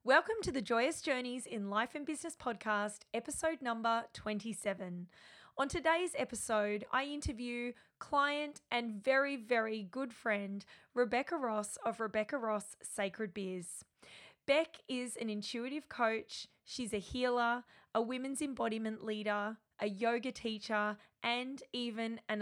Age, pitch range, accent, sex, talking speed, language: 20-39, 210-250 Hz, Australian, female, 130 wpm, English